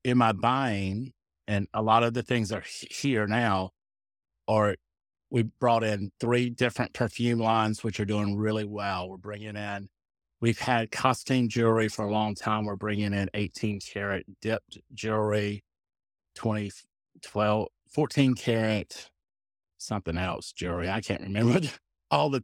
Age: 50-69